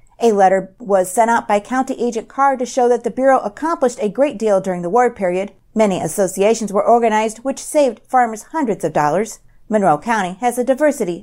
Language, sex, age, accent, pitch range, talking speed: English, female, 50-69, American, 190-240 Hz, 200 wpm